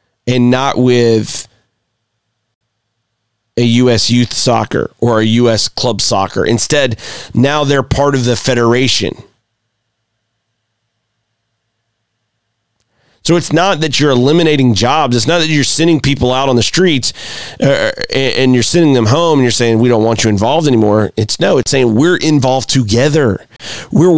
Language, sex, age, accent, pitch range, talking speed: English, male, 30-49, American, 115-145 Hz, 145 wpm